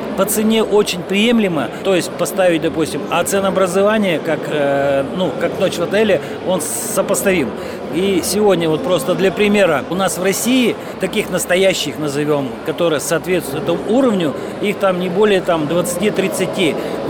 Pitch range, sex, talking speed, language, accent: 165-195 Hz, male, 145 wpm, Russian, native